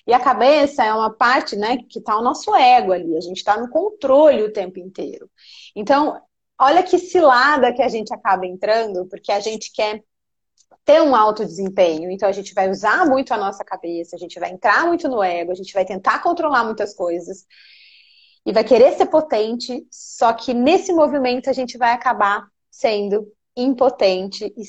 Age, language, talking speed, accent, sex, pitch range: 20-39, Portuguese, 185 wpm, Brazilian, female, 195-260 Hz